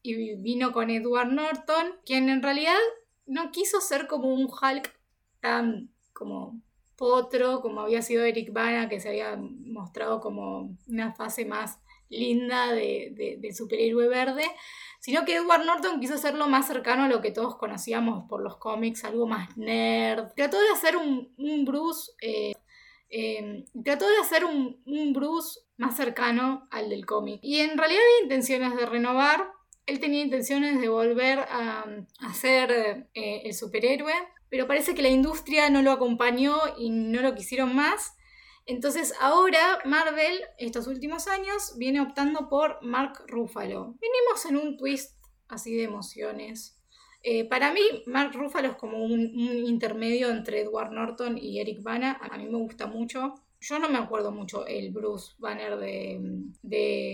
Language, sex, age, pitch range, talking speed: Spanish, female, 10-29, 225-295 Hz, 160 wpm